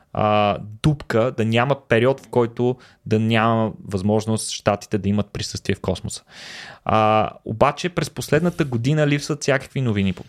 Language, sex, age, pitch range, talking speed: Bulgarian, male, 20-39, 100-130 Hz, 135 wpm